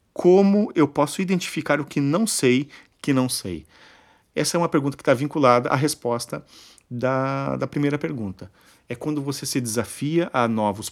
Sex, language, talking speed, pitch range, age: male, Portuguese, 170 wpm, 105-145 Hz, 40-59